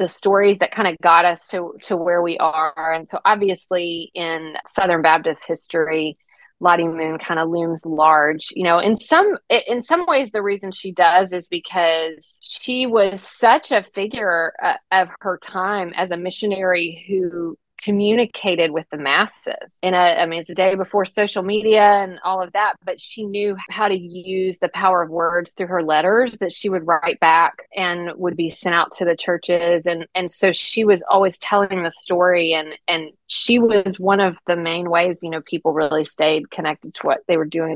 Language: English